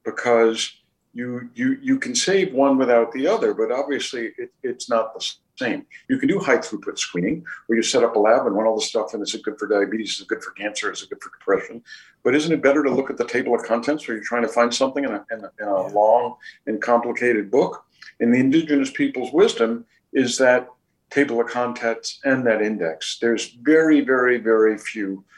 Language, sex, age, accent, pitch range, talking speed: English, male, 50-69, American, 115-155 Hz, 225 wpm